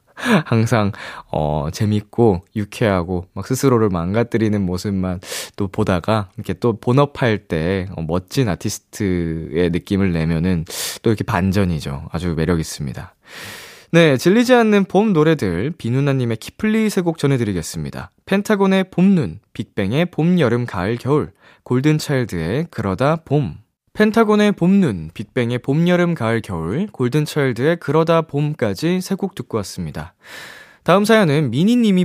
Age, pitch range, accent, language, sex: 20-39, 100-170 Hz, native, Korean, male